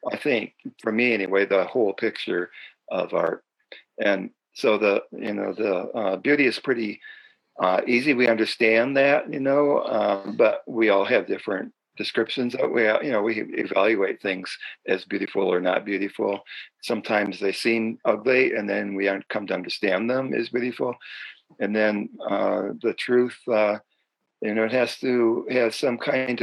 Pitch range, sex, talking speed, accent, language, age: 105-120 Hz, male, 165 wpm, American, English, 50-69